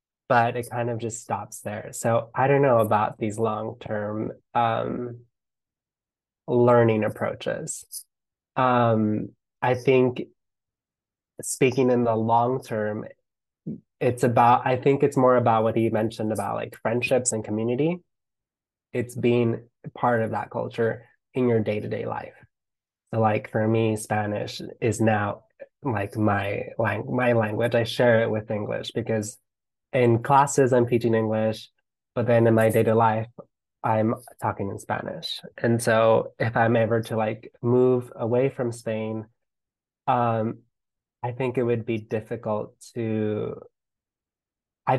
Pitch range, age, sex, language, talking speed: 110-120 Hz, 20-39, male, English, 130 wpm